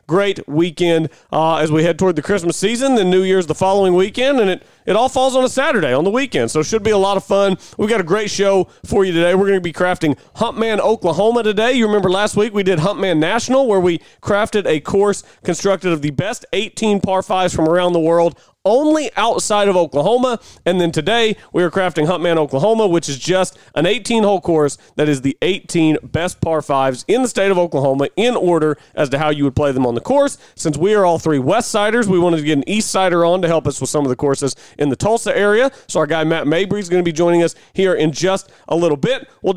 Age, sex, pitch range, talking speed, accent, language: 40-59, male, 160-205 Hz, 245 wpm, American, English